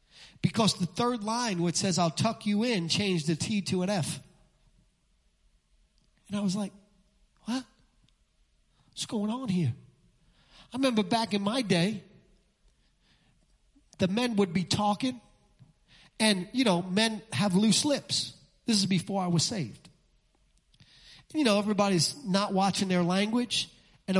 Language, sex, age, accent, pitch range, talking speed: English, male, 40-59, American, 175-255 Hz, 145 wpm